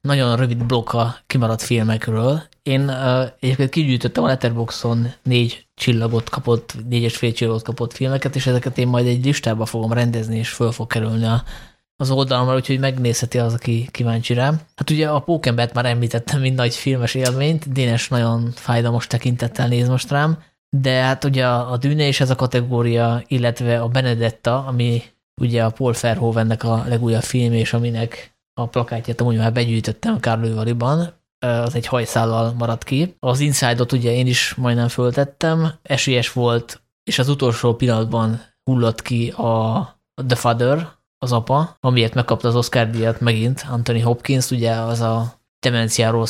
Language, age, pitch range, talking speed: Hungarian, 20-39, 115-130 Hz, 160 wpm